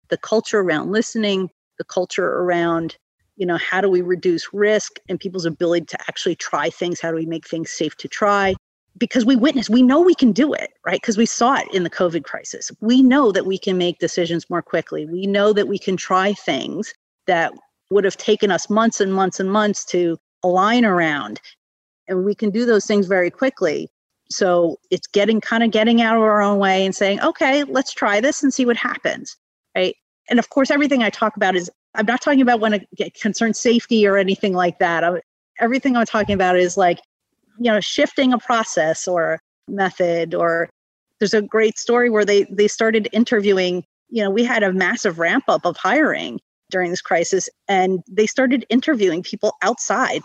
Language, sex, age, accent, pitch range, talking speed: English, female, 40-59, American, 185-245 Hz, 205 wpm